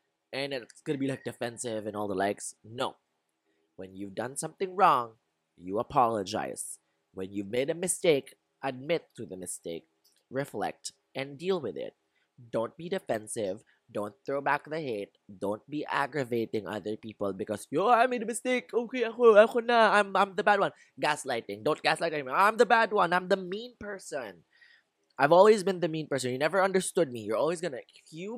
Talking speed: 180 wpm